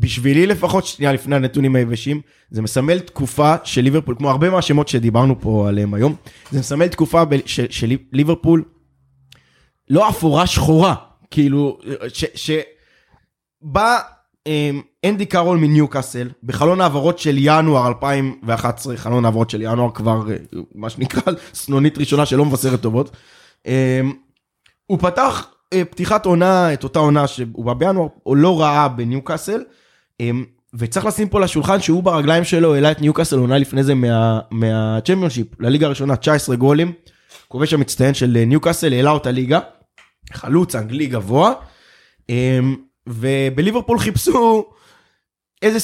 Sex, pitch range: male, 125-170 Hz